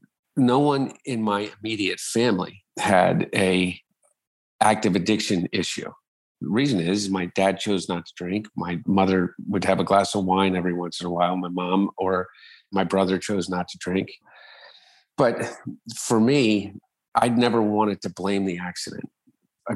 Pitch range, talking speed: 90-105 Hz, 160 wpm